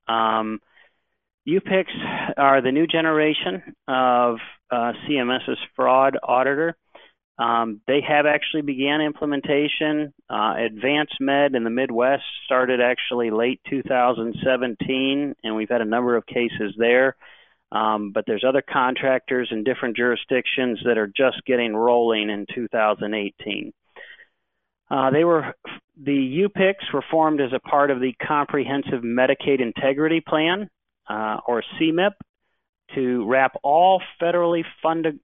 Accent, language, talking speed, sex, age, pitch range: American, English, 125 wpm, male, 40-59, 120-150 Hz